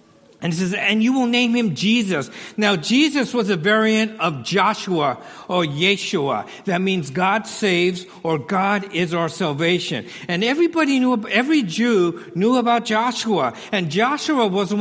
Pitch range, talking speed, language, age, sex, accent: 170-220 Hz, 160 wpm, English, 50-69, male, American